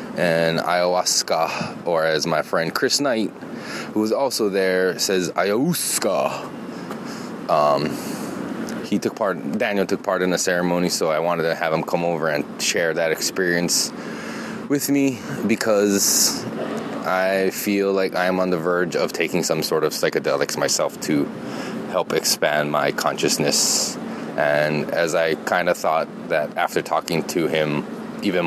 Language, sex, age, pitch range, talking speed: English, male, 20-39, 85-120 Hz, 150 wpm